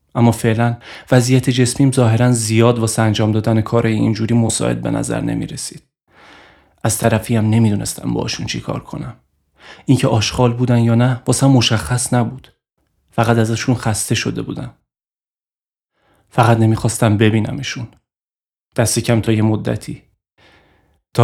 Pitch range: 110-120 Hz